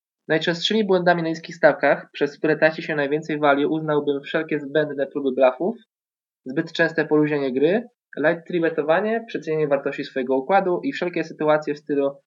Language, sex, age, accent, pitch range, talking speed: Polish, male, 20-39, native, 150-185 Hz, 150 wpm